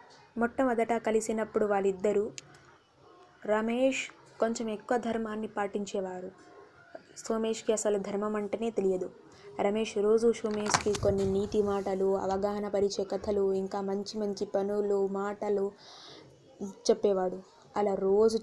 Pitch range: 195-220 Hz